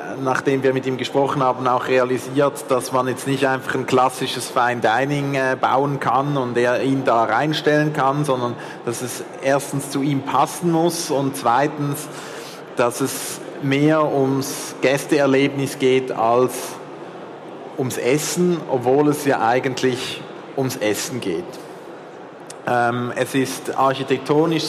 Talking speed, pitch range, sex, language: 130 wpm, 130-150 Hz, male, German